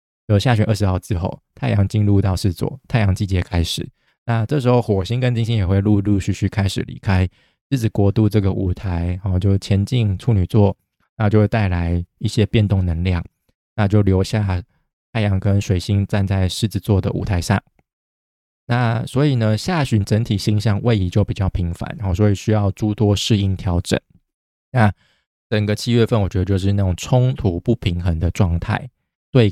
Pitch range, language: 95-110 Hz, Chinese